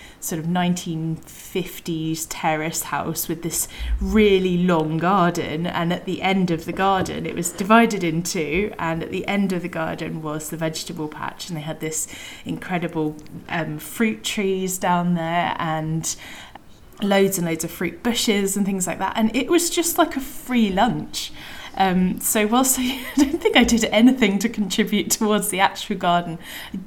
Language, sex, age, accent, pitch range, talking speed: English, female, 20-39, British, 165-205 Hz, 180 wpm